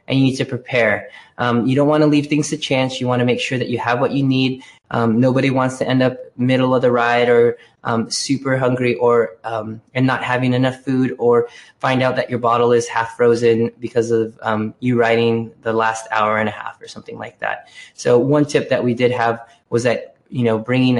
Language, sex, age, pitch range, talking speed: English, male, 20-39, 115-130 Hz, 230 wpm